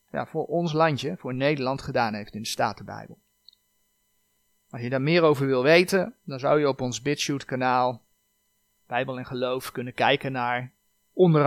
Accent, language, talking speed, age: Dutch, Dutch, 165 wpm, 40-59